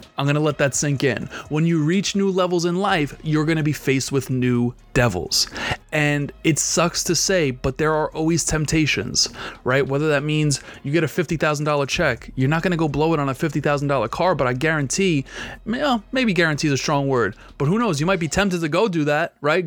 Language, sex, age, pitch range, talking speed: English, male, 30-49, 135-160 Hz, 225 wpm